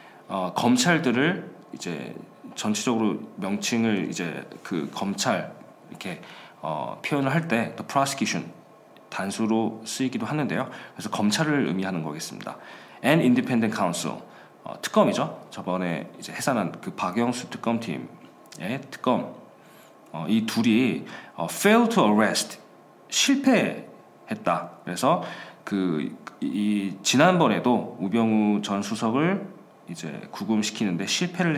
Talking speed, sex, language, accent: 95 wpm, male, English, Korean